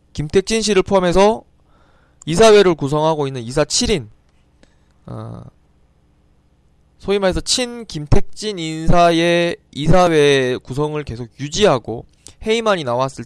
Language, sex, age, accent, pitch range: Korean, male, 20-39, native, 115-180 Hz